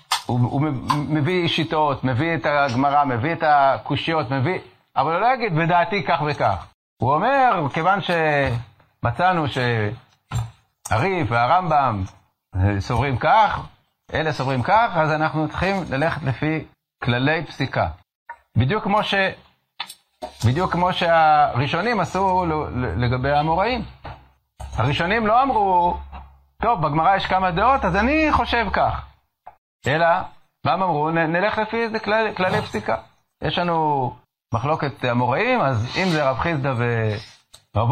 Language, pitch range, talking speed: Hebrew, 125-180 Hz, 120 wpm